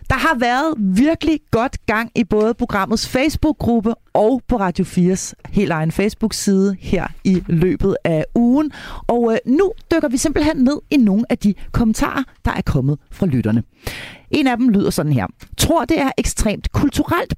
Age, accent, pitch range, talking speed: 40-59, native, 165-240 Hz, 170 wpm